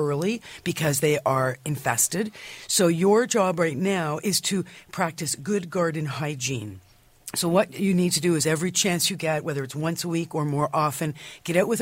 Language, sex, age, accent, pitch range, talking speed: English, female, 50-69, American, 145-185 Hz, 195 wpm